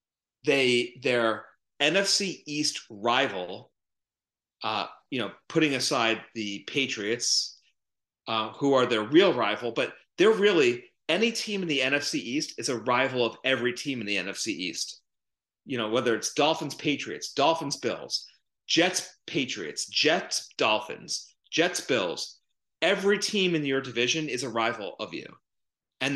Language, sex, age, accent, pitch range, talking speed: English, male, 40-59, American, 120-165 Hz, 140 wpm